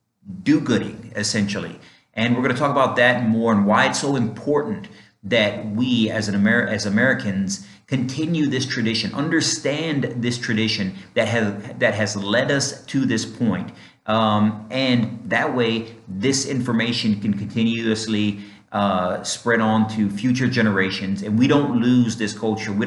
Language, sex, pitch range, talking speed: English, male, 105-120 Hz, 150 wpm